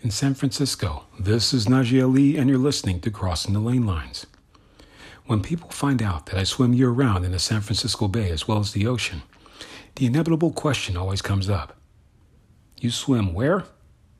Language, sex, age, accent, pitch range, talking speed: English, male, 40-59, American, 95-130 Hz, 180 wpm